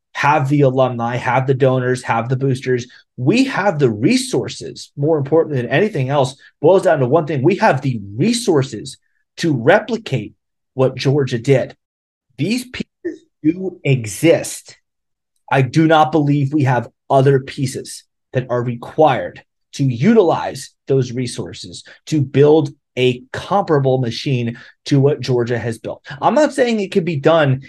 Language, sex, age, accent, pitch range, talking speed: English, male, 30-49, American, 125-155 Hz, 145 wpm